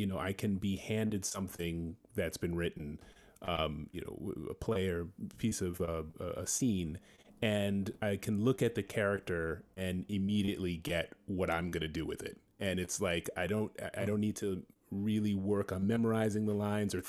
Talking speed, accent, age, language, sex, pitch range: 180 wpm, American, 30-49, English, male, 85-105 Hz